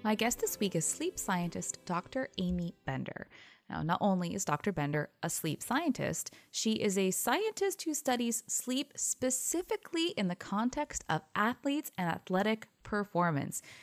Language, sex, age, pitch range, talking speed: English, female, 20-39, 165-225 Hz, 150 wpm